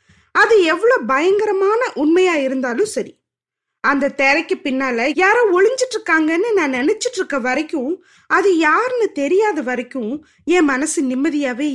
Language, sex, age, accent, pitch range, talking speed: Tamil, female, 20-39, native, 275-390 Hz, 115 wpm